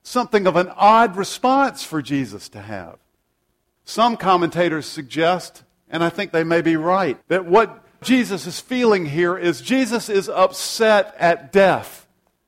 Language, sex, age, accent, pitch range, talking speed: English, male, 50-69, American, 170-230 Hz, 150 wpm